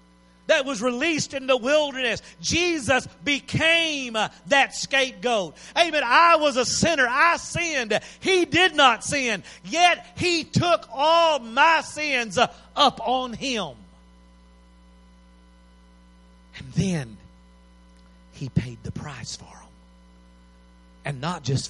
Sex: male